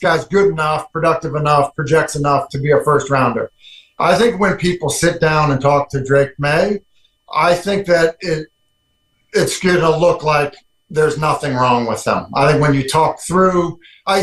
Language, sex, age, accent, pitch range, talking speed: English, male, 40-59, American, 155-195 Hz, 180 wpm